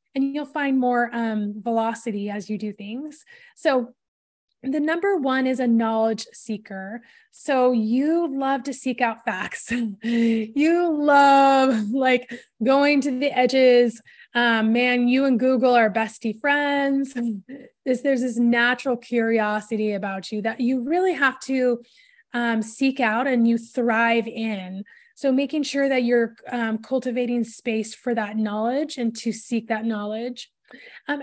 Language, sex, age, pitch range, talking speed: English, female, 20-39, 225-275 Hz, 145 wpm